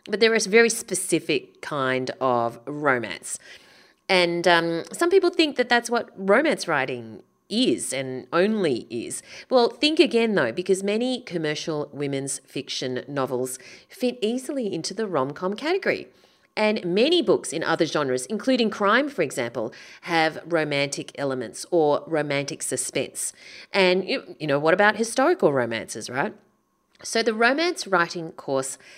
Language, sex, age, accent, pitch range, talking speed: English, female, 30-49, Australian, 150-225 Hz, 140 wpm